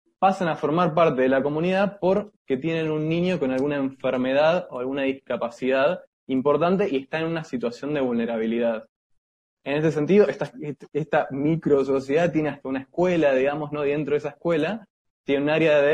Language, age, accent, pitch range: Spanish, 20-39, Argentinian, 130-170 Hz